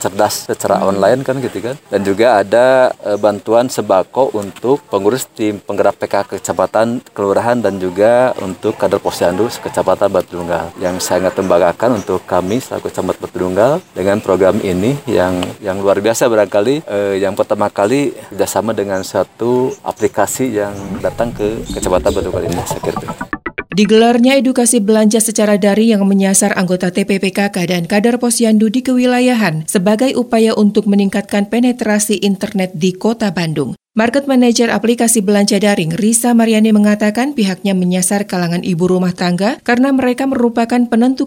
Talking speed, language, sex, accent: 150 wpm, Indonesian, male, native